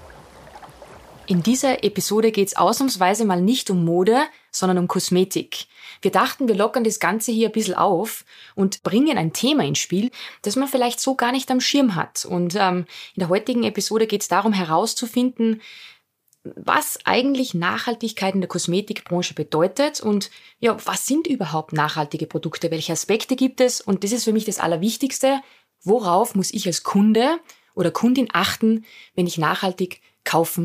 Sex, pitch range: female, 180-230 Hz